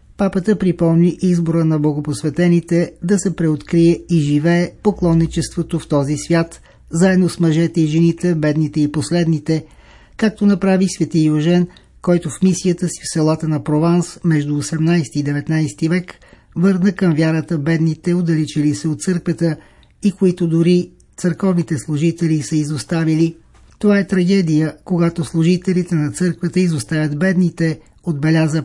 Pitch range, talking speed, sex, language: 155-175 Hz, 135 wpm, male, Bulgarian